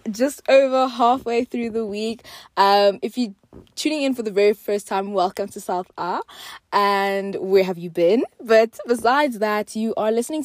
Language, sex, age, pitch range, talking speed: English, female, 20-39, 185-245 Hz, 180 wpm